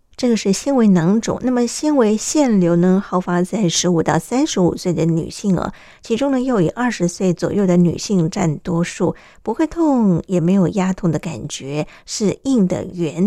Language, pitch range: Chinese, 170-220 Hz